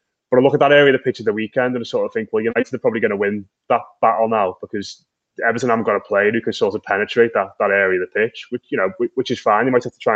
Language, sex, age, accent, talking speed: English, male, 20-39, British, 330 wpm